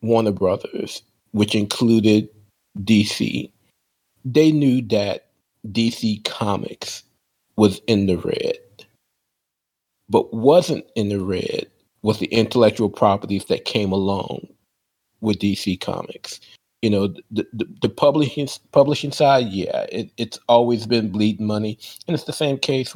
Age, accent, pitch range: 40-59, American, 105-125 Hz